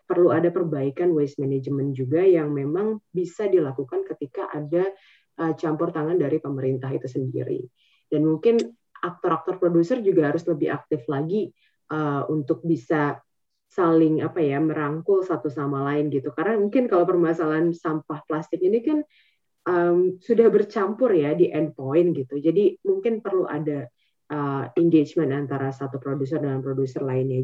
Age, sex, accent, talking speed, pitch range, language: 20-39, female, native, 150 wpm, 145-180 Hz, Indonesian